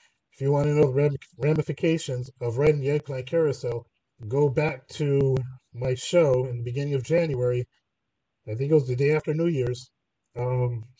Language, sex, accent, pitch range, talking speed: English, male, American, 120-155 Hz, 175 wpm